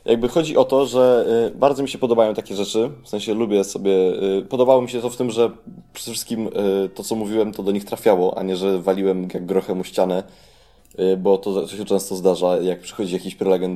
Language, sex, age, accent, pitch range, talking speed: Polish, male, 20-39, native, 95-120 Hz, 205 wpm